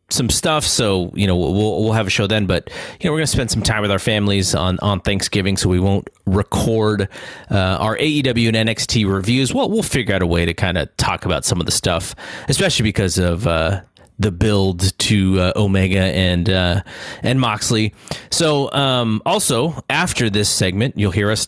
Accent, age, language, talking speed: American, 30-49, English, 200 wpm